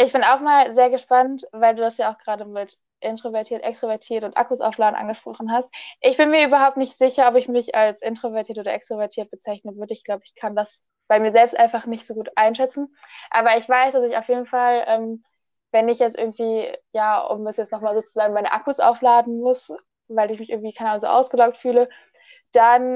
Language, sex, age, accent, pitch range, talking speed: German, female, 10-29, German, 225-255 Hz, 210 wpm